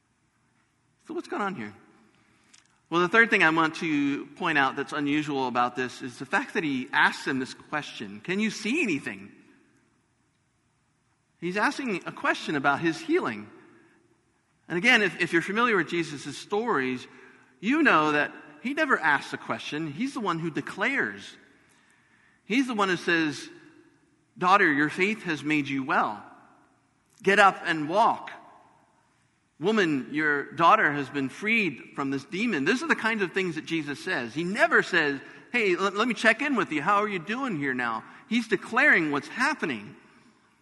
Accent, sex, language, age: American, male, English, 50-69